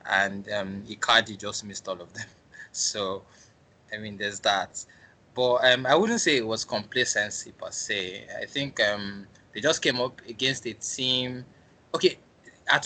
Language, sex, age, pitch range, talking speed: English, male, 20-39, 100-120 Hz, 165 wpm